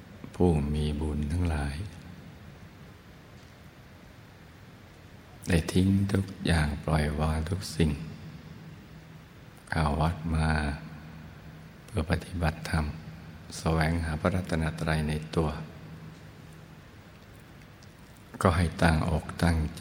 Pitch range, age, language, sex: 80-90 Hz, 60-79, Thai, male